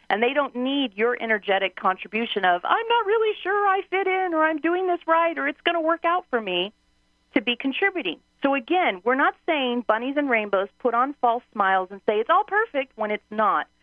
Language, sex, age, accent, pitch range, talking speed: English, female, 40-59, American, 215-325 Hz, 220 wpm